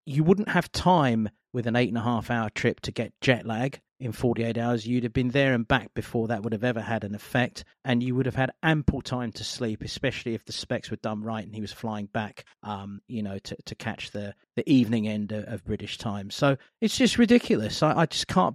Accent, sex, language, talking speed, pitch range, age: British, male, English, 235 wpm, 115-155 Hz, 40-59